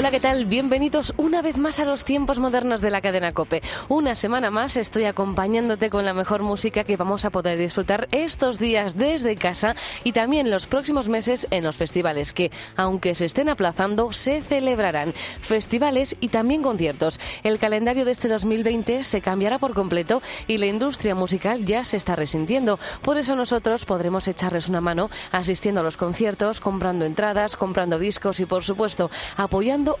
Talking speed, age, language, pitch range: 175 wpm, 20-39, Spanish, 185-245 Hz